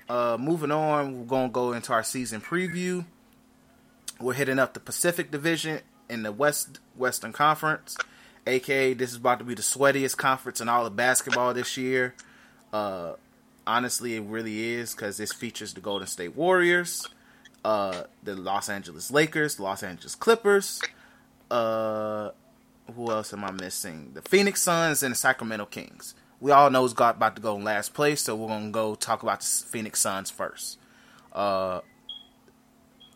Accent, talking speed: American, 165 wpm